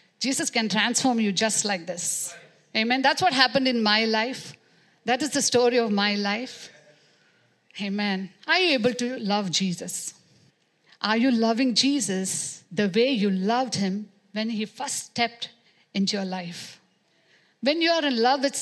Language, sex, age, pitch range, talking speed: English, female, 60-79, 205-290 Hz, 160 wpm